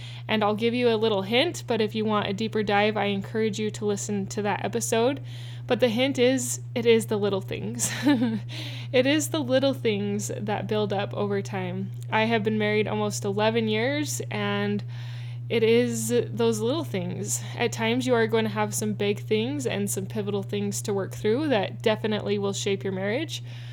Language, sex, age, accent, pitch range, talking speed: English, female, 10-29, American, 110-145 Hz, 195 wpm